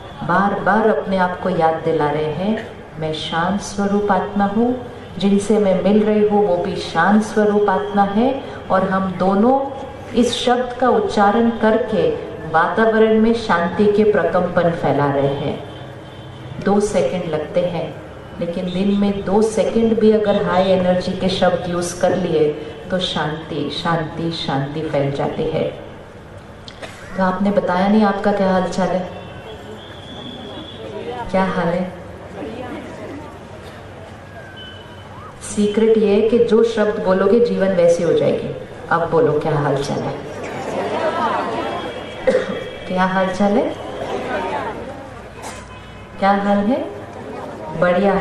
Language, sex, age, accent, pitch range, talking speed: Hindi, female, 50-69, native, 165-220 Hz, 125 wpm